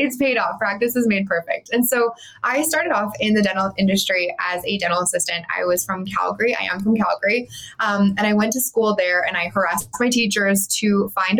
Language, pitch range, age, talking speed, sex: English, 195-235 Hz, 20-39, 220 wpm, female